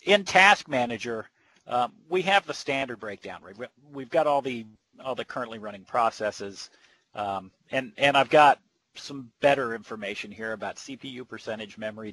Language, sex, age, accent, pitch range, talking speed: English, male, 40-59, American, 110-135 Hz, 155 wpm